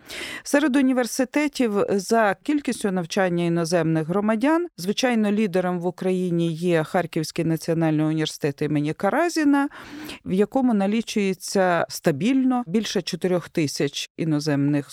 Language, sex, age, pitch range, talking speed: Ukrainian, female, 40-59, 160-210 Hz, 100 wpm